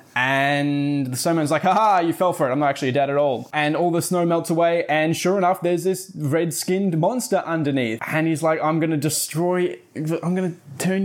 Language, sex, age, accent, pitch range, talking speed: English, male, 20-39, Australian, 135-170 Hz, 210 wpm